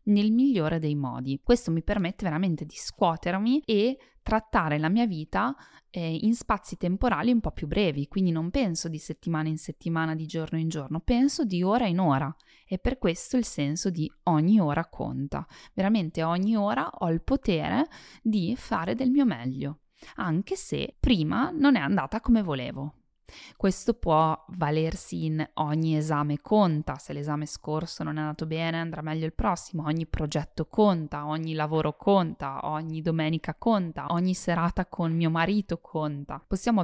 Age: 20-39